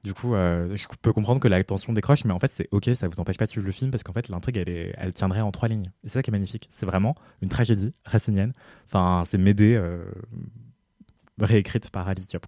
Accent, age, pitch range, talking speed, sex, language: French, 20-39, 90-115 Hz, 255 wpm, male, French